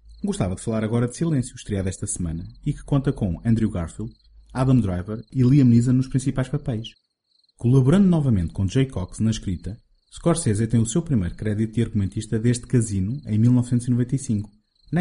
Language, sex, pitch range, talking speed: Portuguese, male, 95-130 Hz, 170 wpm